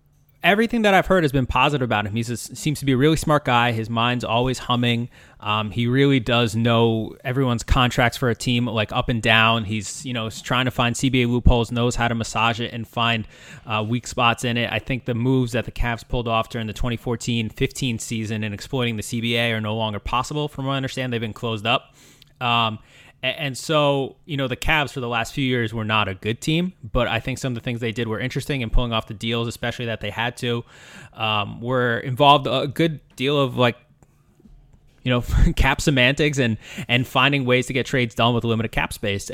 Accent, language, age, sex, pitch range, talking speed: American, English, 20-39, male, 115-130 Hz, 225 wpm